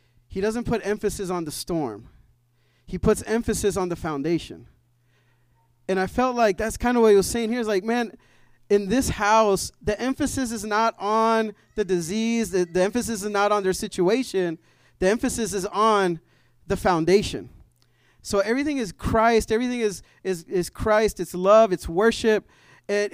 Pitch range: 170-230 Hz